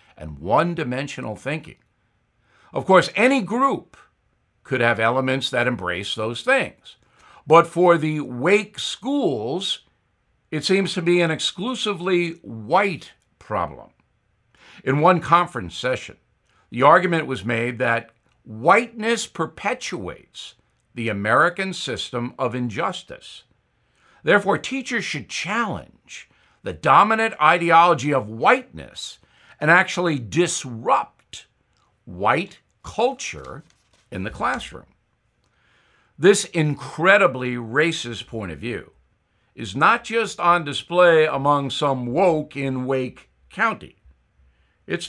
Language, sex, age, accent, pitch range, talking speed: English, male, 60-79, American, 115-175 Hz, 105 wpm